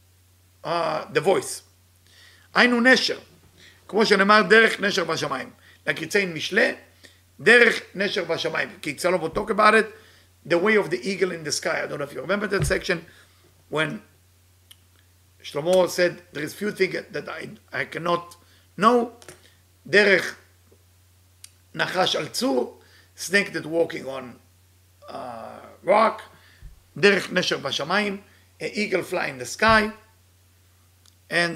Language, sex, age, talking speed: English, male, 50-69, 135 wpm